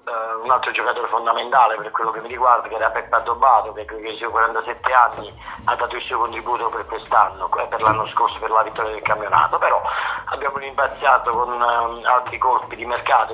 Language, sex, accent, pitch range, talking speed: Italian, male, native, 115-130 Hz, 190 wpm